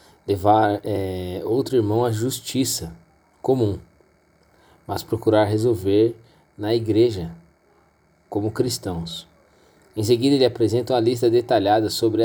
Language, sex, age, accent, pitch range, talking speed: Portuguese, male, 20-39, Brazilian, 100-115 Hz, 110 wpm